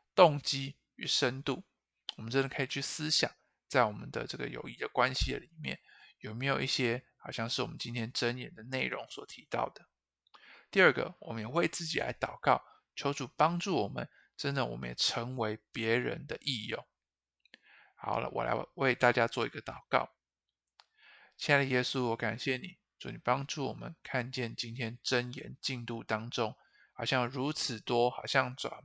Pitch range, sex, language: 115-140 Hz, male, Chinese